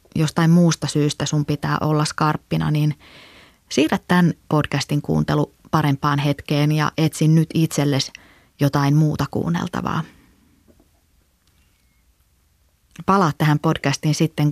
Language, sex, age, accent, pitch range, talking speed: Finnish, female, 30-49, native, 140-160 Hz, 105 wpm